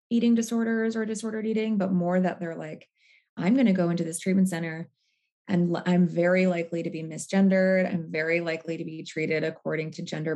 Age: 20-39